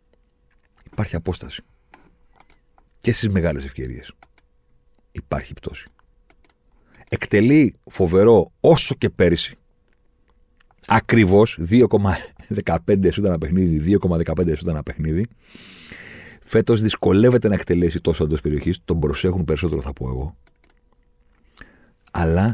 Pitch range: 70-95 Hz